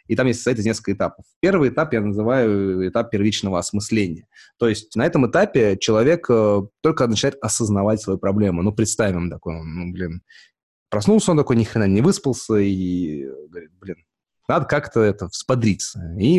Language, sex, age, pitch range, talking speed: Russian, male, 20-39, 95-125 Hz, 165 wpm